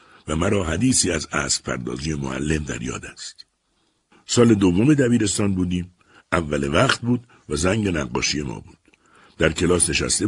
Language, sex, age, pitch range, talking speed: Persian, male, 60-79, 80-120 Hz, 145 wpm